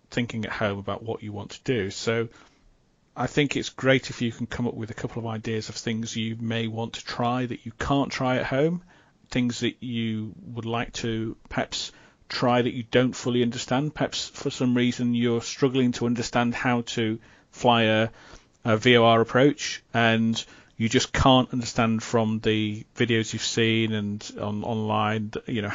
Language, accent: English, British